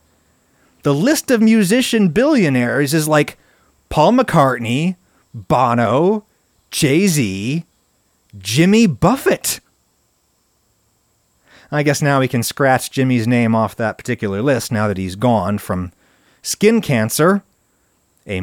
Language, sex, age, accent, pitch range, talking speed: English, male, 30-49, American, 115-185 Hz, 110 wpm